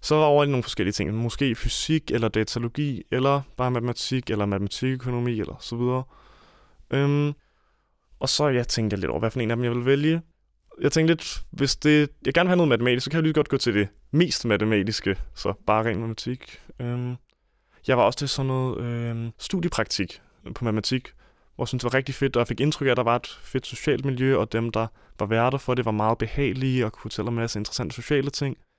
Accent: native